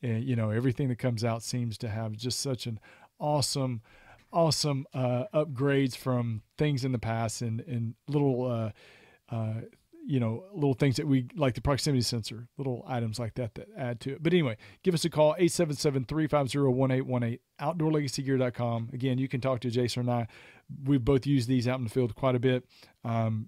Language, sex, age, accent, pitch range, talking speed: English, male, 40-59, American, 120-145 Hz, 215 wpm